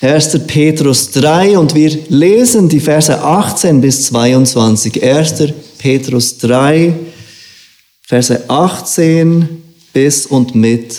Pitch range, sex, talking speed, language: 125-165 Hz, male, 105 wpm, German